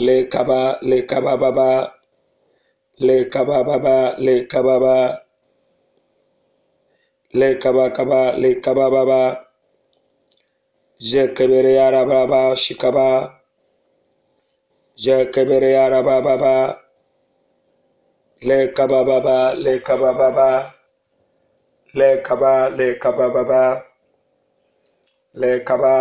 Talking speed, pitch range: 60 wpm, 125-135 Hz